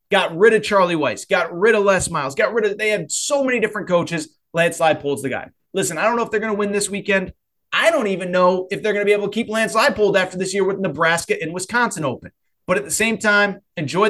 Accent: American